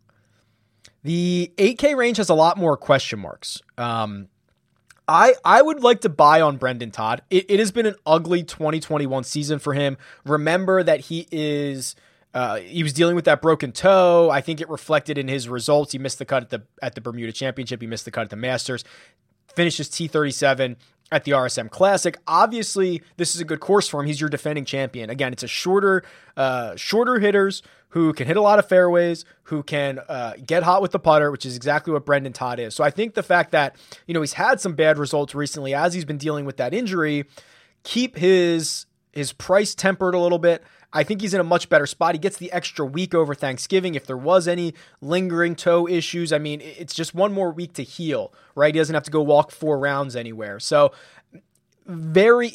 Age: 20-39